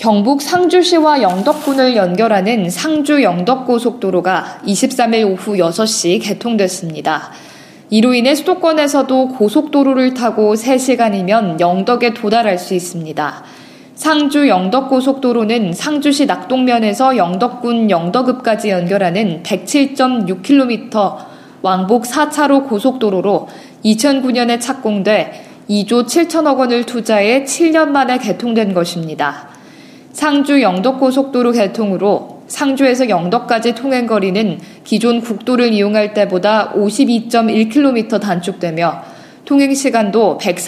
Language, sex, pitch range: Korean, female, 200-265 Hz